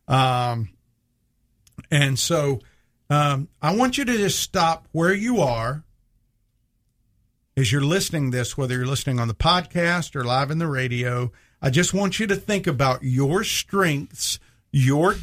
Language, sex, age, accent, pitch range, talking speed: English, male, 50-69, American, 125-180 Hz, 155 wpm